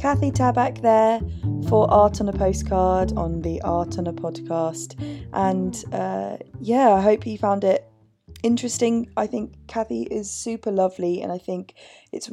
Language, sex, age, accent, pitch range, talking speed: English, female, 20-39, British, 165-210 Hz, 160 wpm